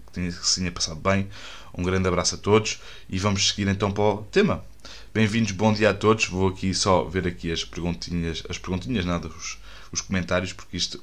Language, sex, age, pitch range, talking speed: Portuguese, male, 20-39, 95-110 Hz, 195 wpm